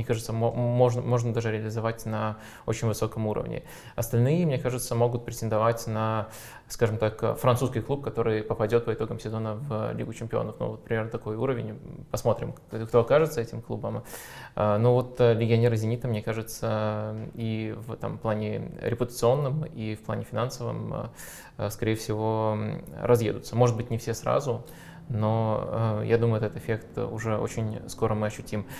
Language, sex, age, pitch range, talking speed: Russian, male, 20-39, 110-120 Hz, 155 wpm